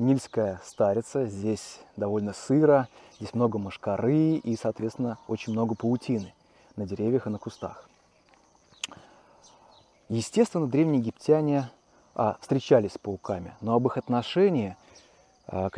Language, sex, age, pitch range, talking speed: Russian, male, 30-49, 110-150 Hz, 115 wpm